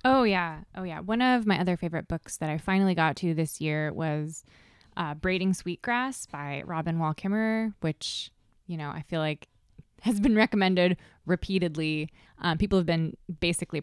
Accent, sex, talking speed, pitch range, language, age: American, female, 175 wpm, 155-205 Hz, English, 20-39